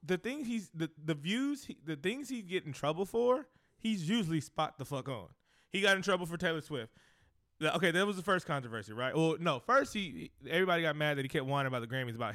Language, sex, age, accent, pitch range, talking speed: English, male, 20-39, American, 120-160 Hz, 240 wpm